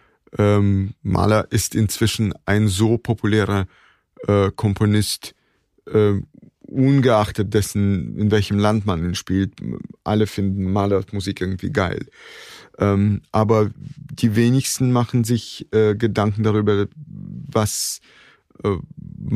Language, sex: German, male